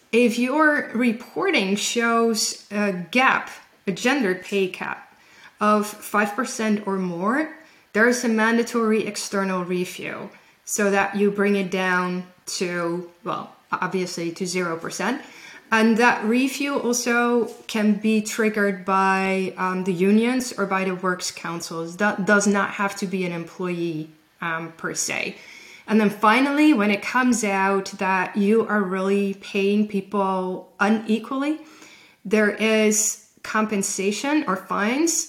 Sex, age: female, 20-39